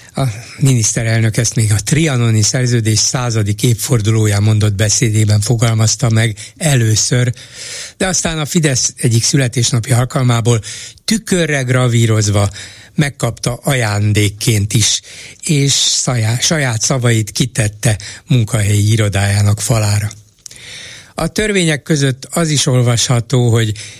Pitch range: 110-140 Hz